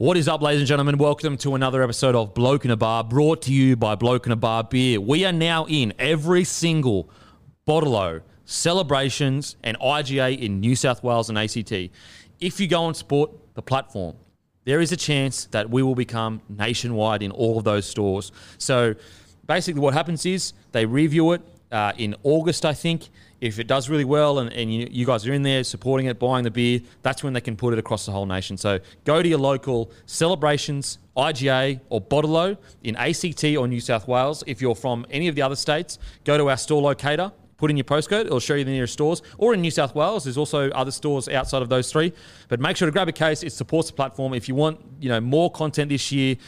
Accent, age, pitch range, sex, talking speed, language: Australian, 30-49, 115-150 Hz, male, 225 wpm, English